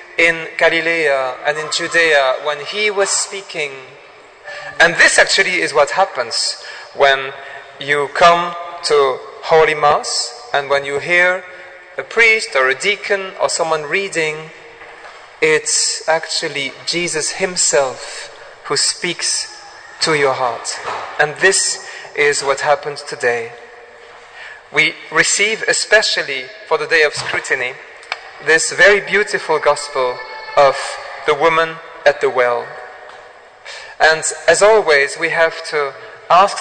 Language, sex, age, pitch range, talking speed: English, male, 40-59, 150-210 Hz, 120 wpm